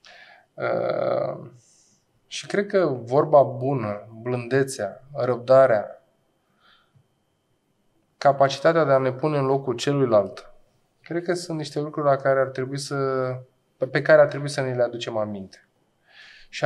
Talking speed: 130 wpm